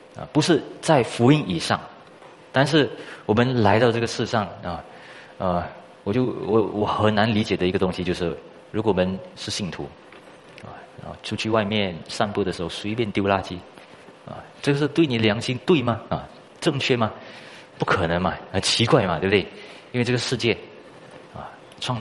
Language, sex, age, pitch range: Chinese, male, 30-49, 90-120 Hz